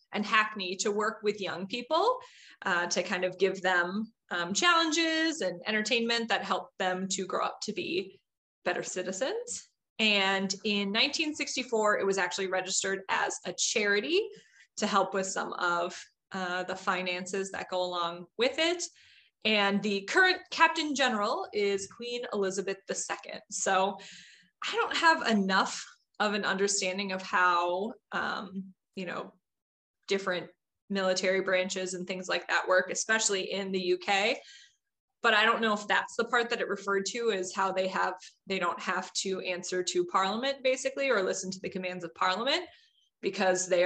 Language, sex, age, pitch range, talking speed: English, female, 20-39, 185-245 Hz, 160 wpm